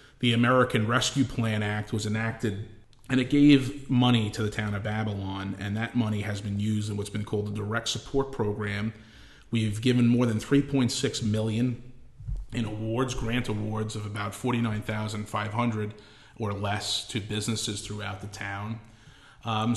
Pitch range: 105-125 Hz